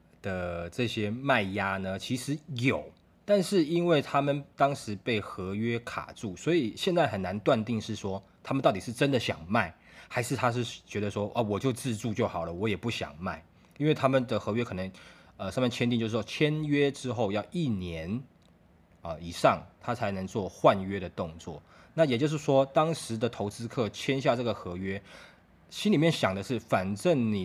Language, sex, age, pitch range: Chinese, male, 20-39, 95-125 Hz